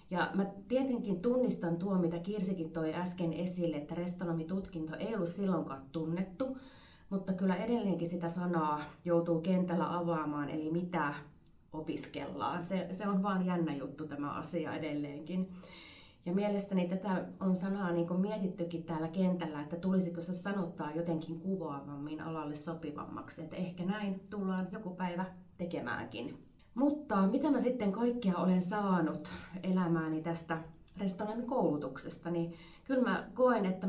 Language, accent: Finnish, native